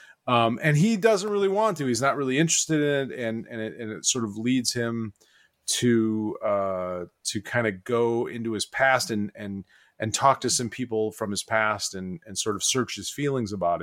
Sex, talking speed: male, 215 wpm